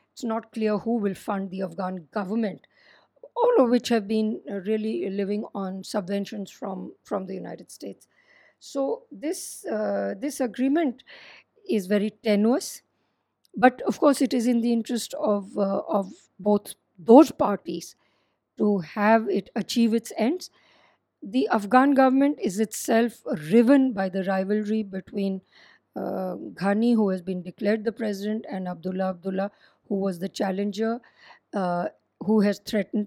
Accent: Indian